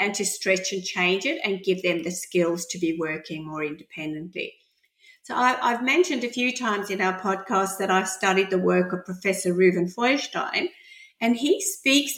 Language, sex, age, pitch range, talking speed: English, female, 50-69, 185-270 Hz, 180 wpm